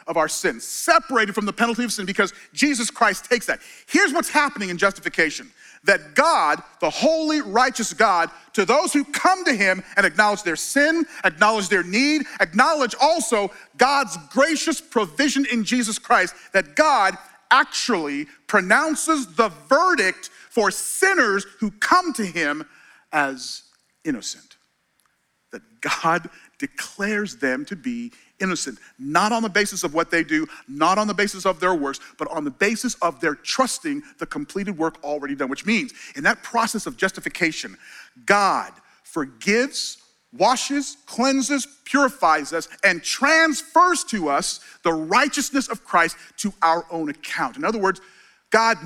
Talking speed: 150 wpm